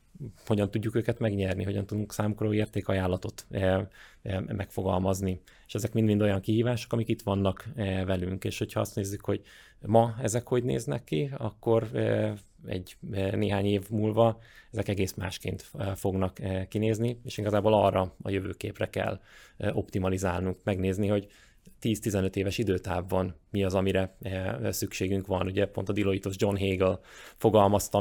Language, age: Hungarian, 20-39